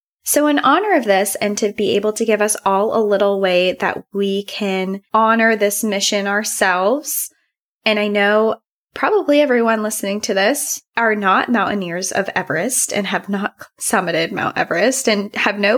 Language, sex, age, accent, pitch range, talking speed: English, female, 20-39, American, 195-235 Hz, 170 wpm